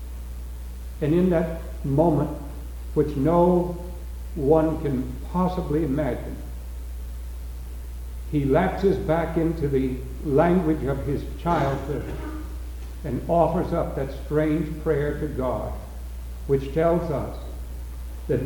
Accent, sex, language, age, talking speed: American, male, English, 60-79, 100 wpm